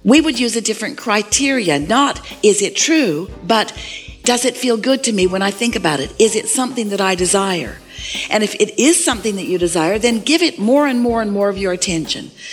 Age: 50-69